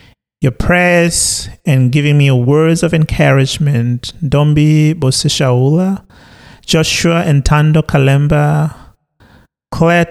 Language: English